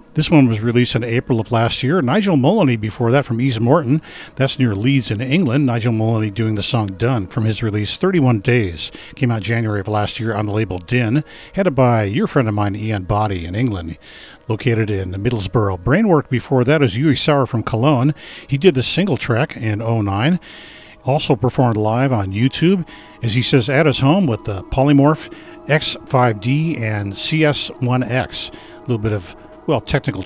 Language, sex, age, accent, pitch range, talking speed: English, male, 50-69, American, 110-150 Hz, 185 wpm